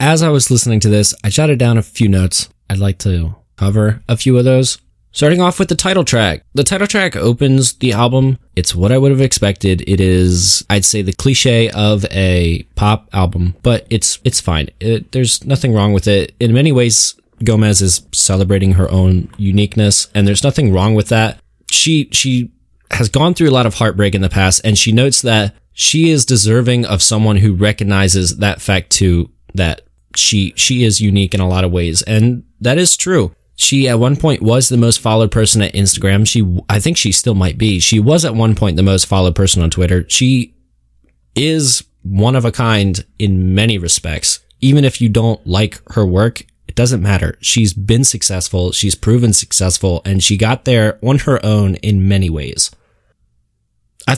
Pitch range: 95-125 Hz